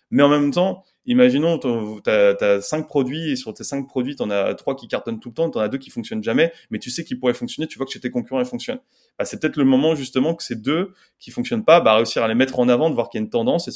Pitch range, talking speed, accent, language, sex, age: 120-160 Hz, 315 wpm, French, French, male, 20-39